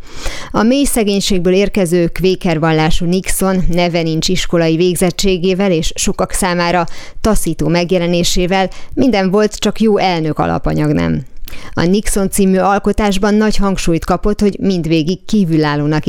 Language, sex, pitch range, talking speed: Hungarian, female, 165-190 Hz, 125 wpm